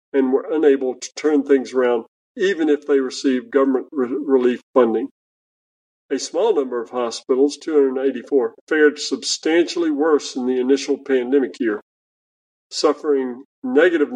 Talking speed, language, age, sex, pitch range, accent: 130 wpm, English, 50-69, male, 125-150 Hz, American